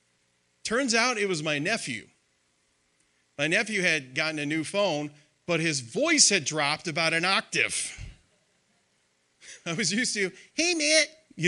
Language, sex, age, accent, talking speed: English, male, 40-59, American, 145 wpm